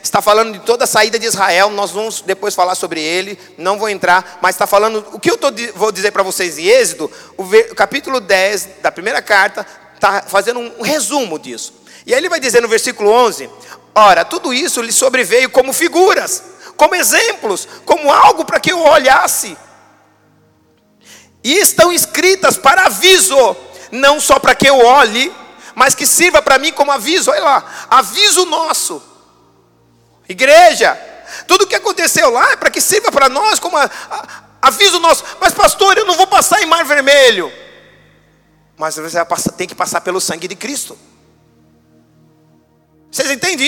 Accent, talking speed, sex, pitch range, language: Brazilian, 170 wpm, male, 210-345 Hz, Portuguese